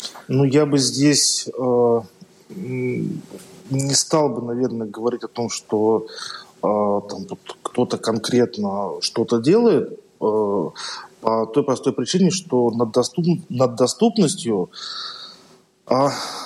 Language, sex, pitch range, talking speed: Russian, male, 120-170 Hz, 100 wpm